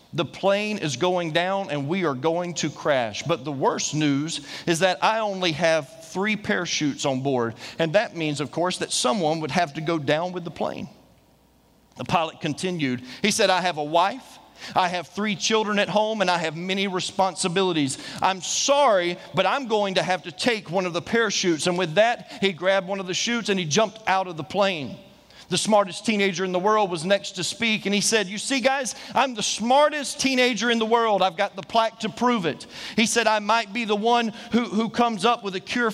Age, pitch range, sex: 40-59, 170-220 Hz, male